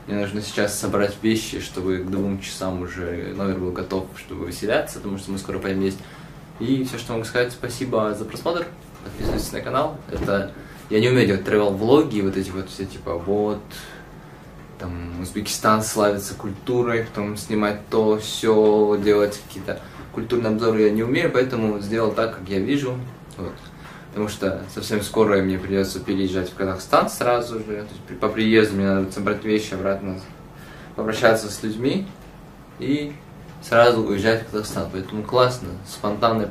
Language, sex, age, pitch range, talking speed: Russian, male, 20-39, 95-125 Hz, 160 wpm